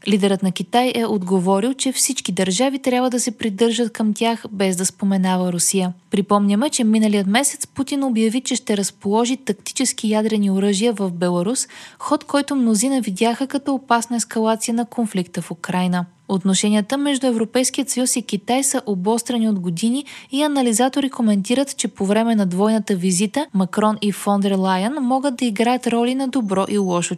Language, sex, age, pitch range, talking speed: Bulgarian, female, 20-39, 195-255 Hz, 165 wpm